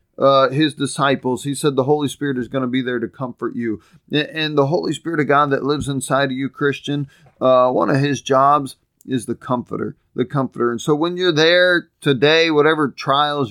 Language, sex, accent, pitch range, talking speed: English, male, American, 125-145 Hz, 205 wpm